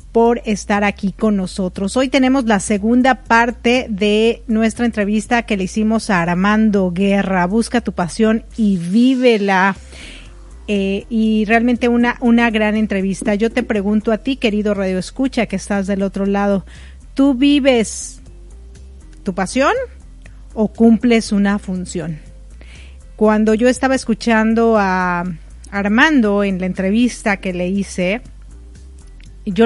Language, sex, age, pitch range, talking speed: Spanish, female, 40-59, 195-230 Hz, 130 wpm